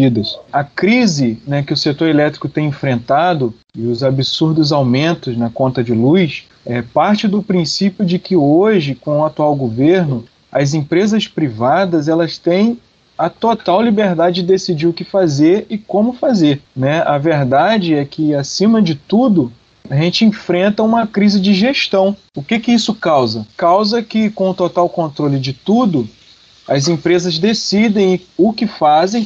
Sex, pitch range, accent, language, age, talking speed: male, 155-205 Hz, Brazilian, Portuguese, 20-39, 160 wpm